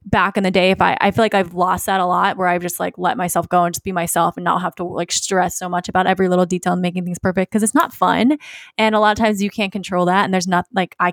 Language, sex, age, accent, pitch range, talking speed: English, female, 20-39, American, 180-215 Hz, 320 wpm